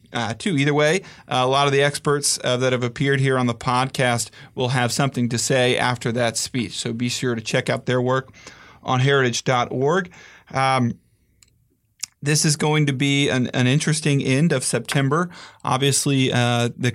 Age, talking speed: 40-59, 175 wpm